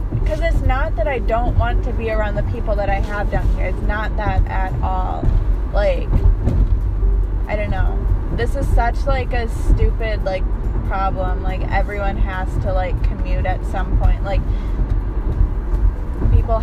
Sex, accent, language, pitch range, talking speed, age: female, American, English, 90-105 Hz, 160 wpm, 20-39